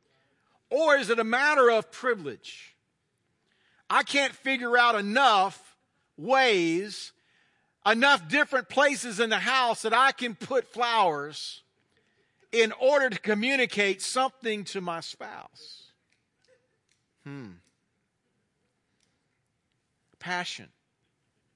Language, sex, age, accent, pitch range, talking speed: English, male, 50-69, American, 180-245 Hz, 95 wpm